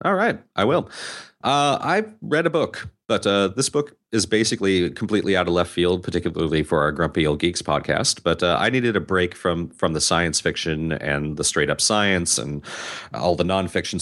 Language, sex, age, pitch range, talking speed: English, male, 30-49, 80-105 Hz, 200 wpm